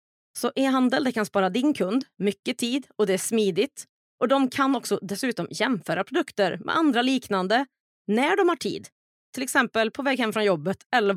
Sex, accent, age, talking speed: female, native, 30-49, 190 wpm